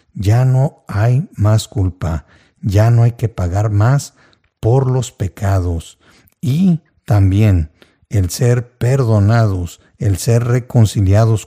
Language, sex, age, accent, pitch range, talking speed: Spanish, male, 50-69, Mexican, 95-120 Hz, 115 wpm